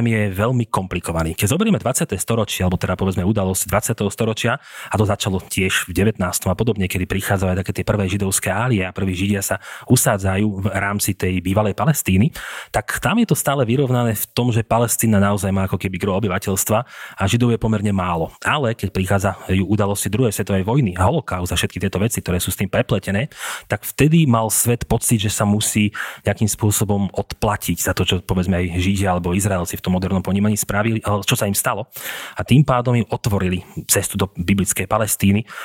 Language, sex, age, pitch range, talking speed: Slovak, male, 30-49, 95-115 Hz, 190 wpm